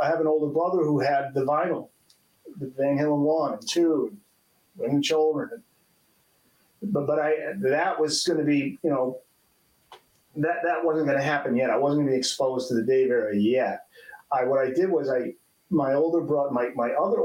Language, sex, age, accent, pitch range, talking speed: English, male, 40-59, American, 130-170 Hz, 200 wpm